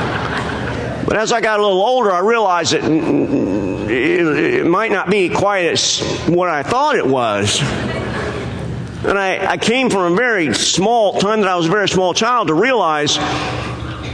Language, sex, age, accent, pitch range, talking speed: English, male, 50-69, American, 145-195 Hz, 170 wpm